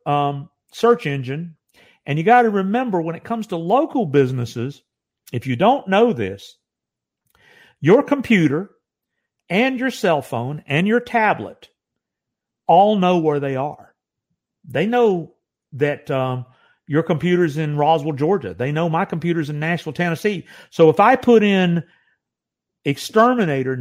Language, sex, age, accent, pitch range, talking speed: English, male, 50-69, American, 135-215 Hz, 140 wpm